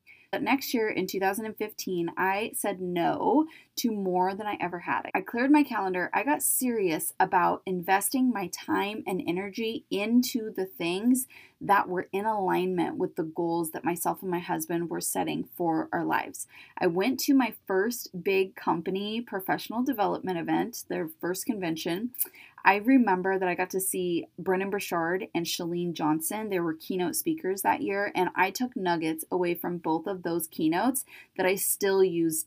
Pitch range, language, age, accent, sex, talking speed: 180-245 Hz, English, 20-39, American, female, 170 wpm